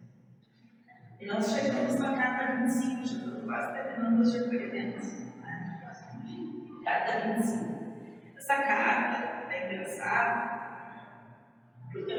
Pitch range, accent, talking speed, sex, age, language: 195-255 Hz, Brazilian, 95 wpm, female, 40-59, Portuguese